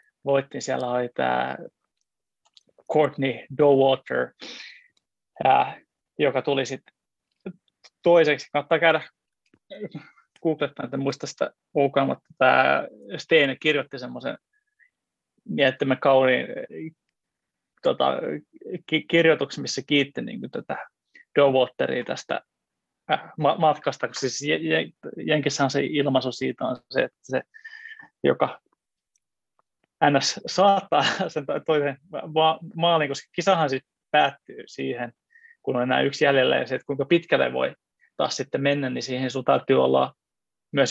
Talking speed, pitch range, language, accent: 105 wpm, 130-160 Hz, Finnish, native